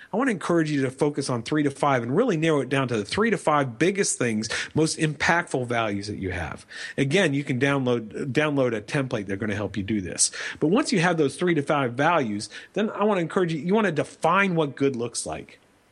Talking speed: 250 wpm